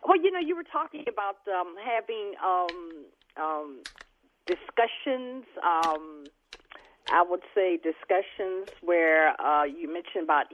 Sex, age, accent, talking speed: female, 50-69, American, 125 wpm